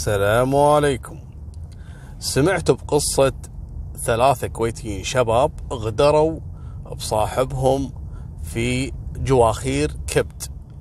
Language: Arabic